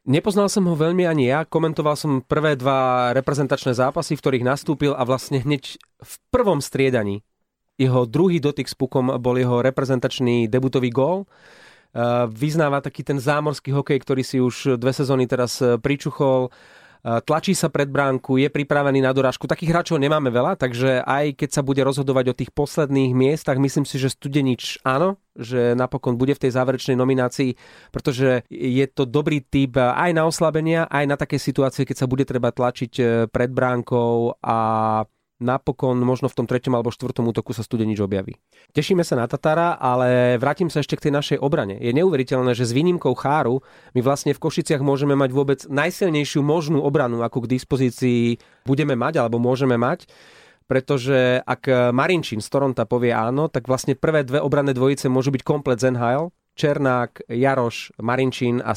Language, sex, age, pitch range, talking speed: Slovak, male, 30-49, 125-145 Hz, 170 wpm